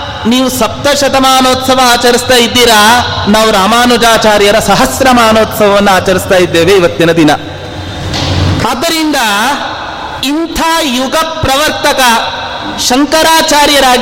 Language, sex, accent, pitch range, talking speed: Kannada, male, native, 215-290 Hz, 50 wpm